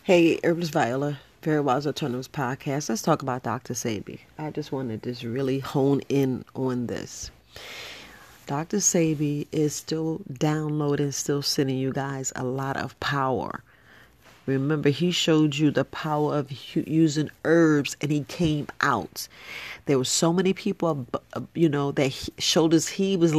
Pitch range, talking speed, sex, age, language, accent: 135-160 Hz, 155 wpm, female, 40-59, English, American